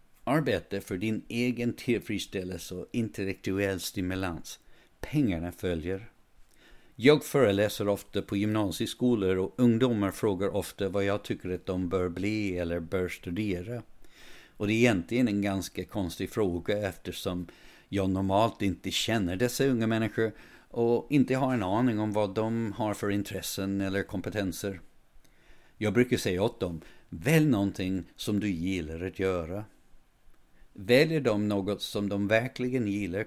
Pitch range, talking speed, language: 90-110 Hz, 140 wpm, Swedish